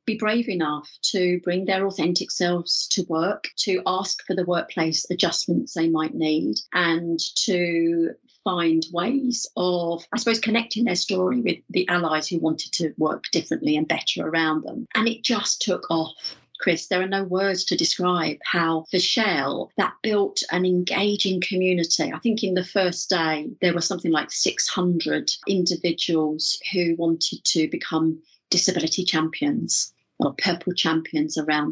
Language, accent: English, British